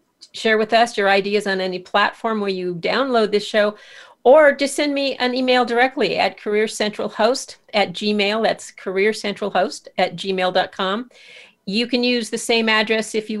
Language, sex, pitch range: English, female, 195-230 Hz